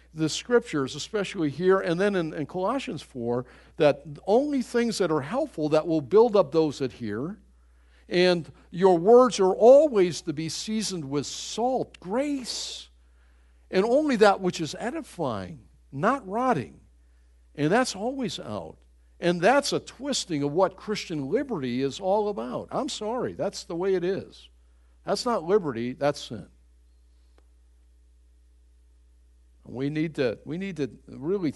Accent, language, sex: American, English, male